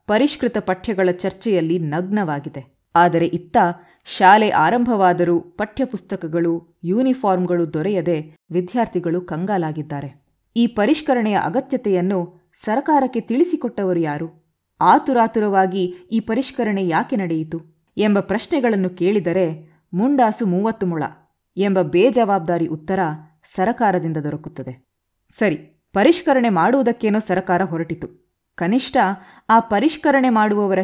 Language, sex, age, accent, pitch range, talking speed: Kannada, female, 20-39, native, 175-230 Hz, 85 wpm